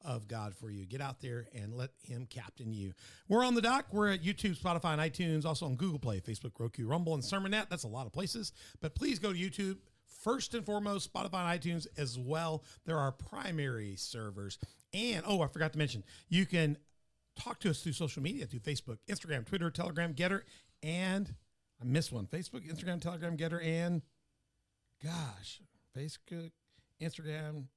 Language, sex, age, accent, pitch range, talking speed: English, male, 50-69, American, 120-175 Hz, 185 wpm